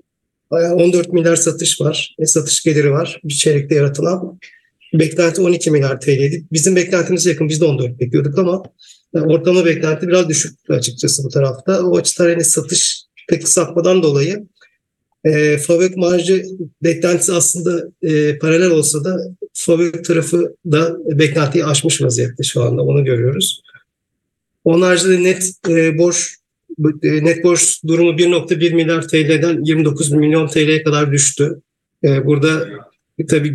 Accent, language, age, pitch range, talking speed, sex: Turkish, English, 40-59, 150-175 Hz, 130 wpm, male